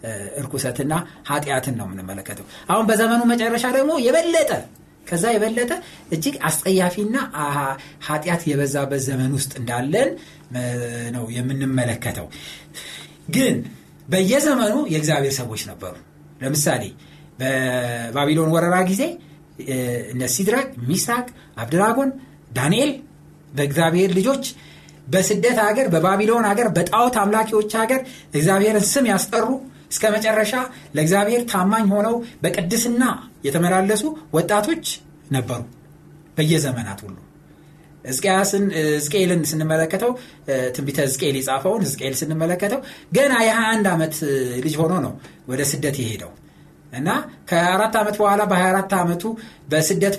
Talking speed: 90 wpm